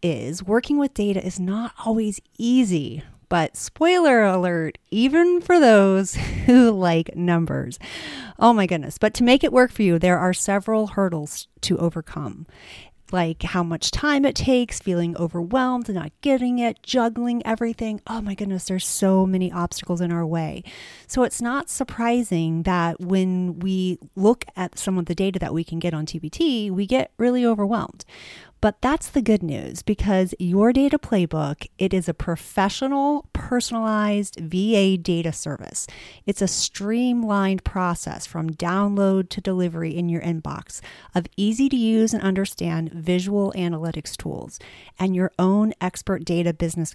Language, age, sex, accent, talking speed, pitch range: English, 30-49, female, American, 155 wpm, 170-225 Hz